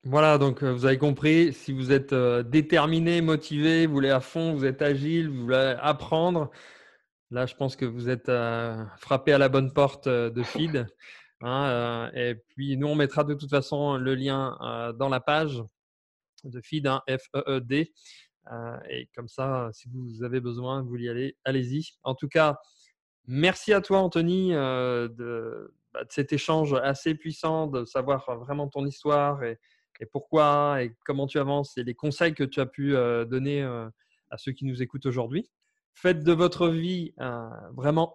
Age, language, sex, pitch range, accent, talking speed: 20-39, French, male, 125-155 Hz, French, 180 wpm